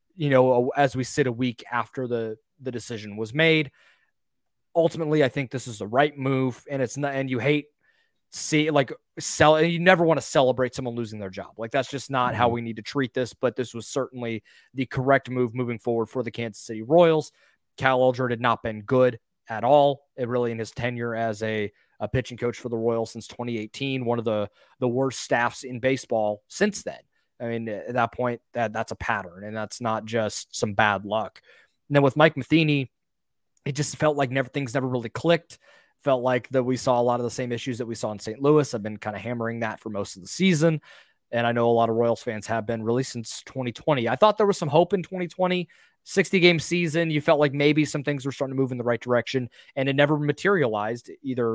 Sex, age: male, 20-39